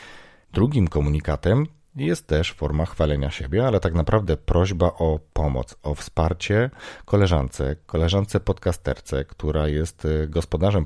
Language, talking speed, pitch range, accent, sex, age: Polish, 115 wpm, 75-100 Hz, native, male, 40-59